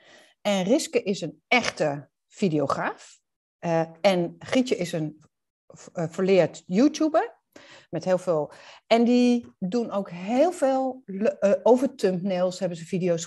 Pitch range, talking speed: 175-240 Hz, 130 wpm